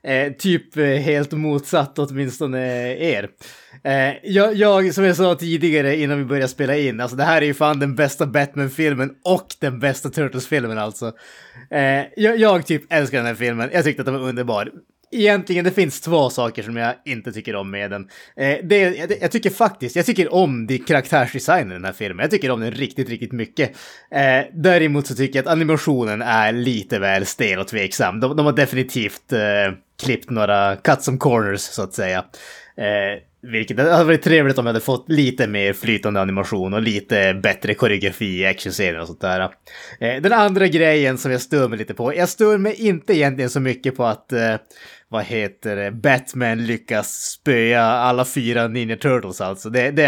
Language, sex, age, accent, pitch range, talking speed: Swedish, male, 20-39, Norwegian, 115-155 Hz, 190 wpm